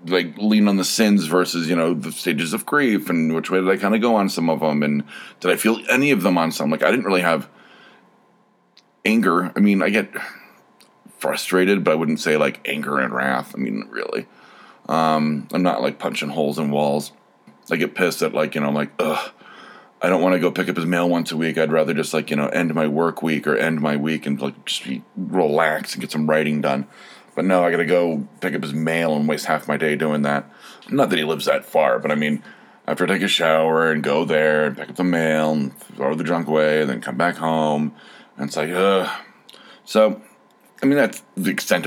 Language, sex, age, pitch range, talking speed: English, male, 30-49, 75-95 Hz, 240 wpm